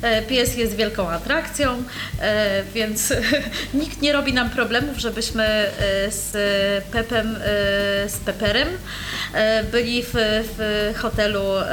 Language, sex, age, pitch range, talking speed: Polish, female, 30-49, 210-255 Hz, 90 wpm